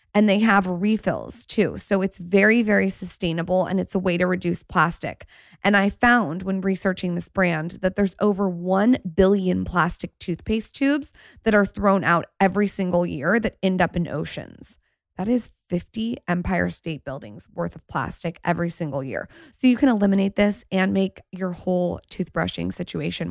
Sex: female